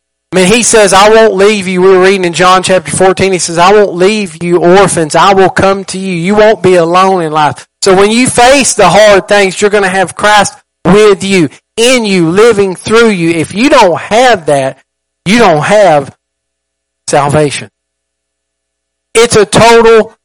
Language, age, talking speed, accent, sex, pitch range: English, 40-59, 185 wpm, American, male, 140-195 Hz